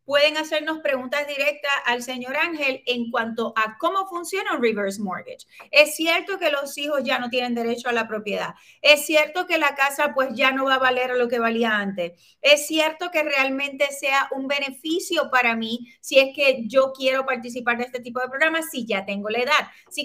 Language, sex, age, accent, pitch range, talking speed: Spanish, female, 30-49, American, 255-295 Hz, 210 wpm